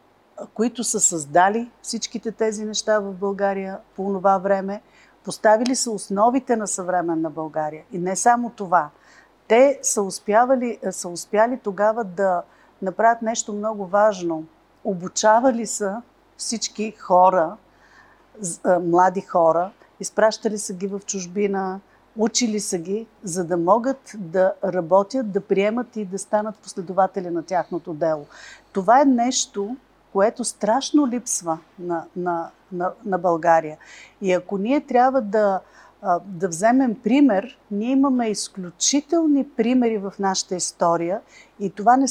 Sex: female